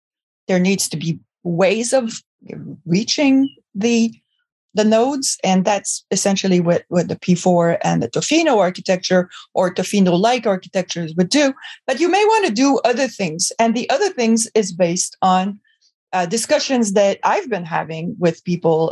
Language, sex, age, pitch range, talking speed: English, female, 30-49, 180-245 Hz, 155 wpm